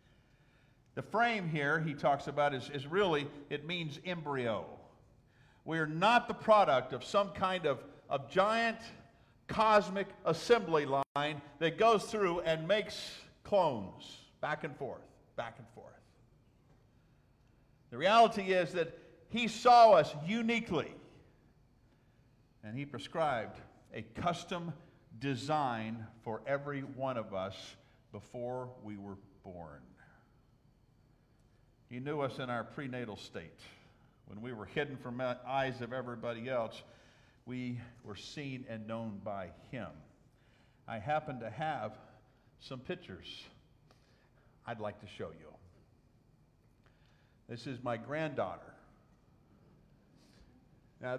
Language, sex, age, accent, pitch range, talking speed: English, male, 50-69, American, 120-160 Hz, 115 wpm